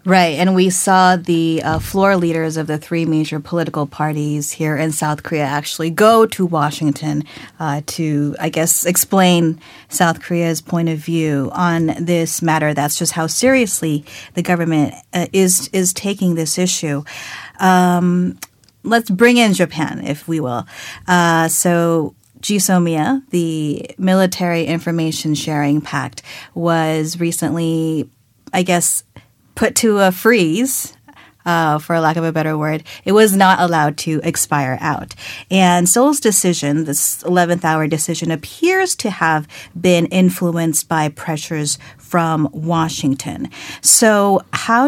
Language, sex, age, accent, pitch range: Korean, female, 40-59, American, 155-180 Hz